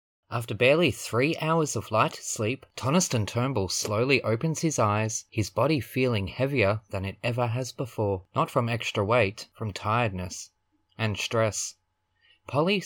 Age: 20-39